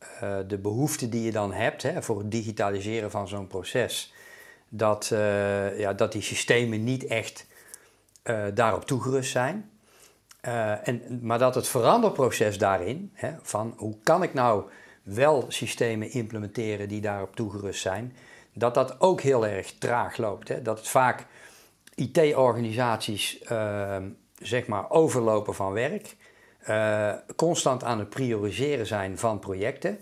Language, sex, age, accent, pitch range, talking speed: Dutch, male, 50-69, Dutch, 105-125 Hz, 145 wpm